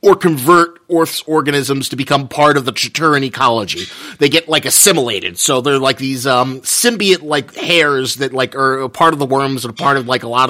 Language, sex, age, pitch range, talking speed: English, male, 30-49, 140-180 Hz, 215 wpm